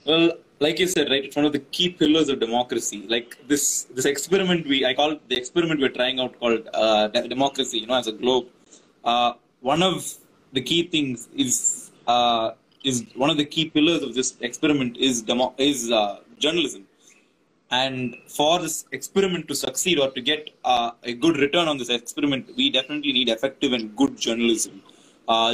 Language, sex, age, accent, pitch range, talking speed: Tamil, male, 20-39, native, 120-155 Hz, 190 wpm